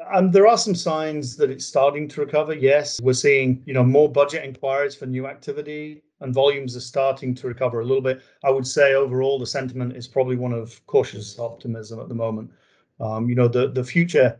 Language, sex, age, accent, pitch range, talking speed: English, male, 40-59, British, 120-140 Hz, 215 wpm